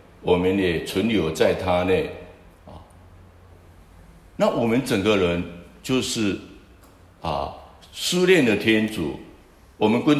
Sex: male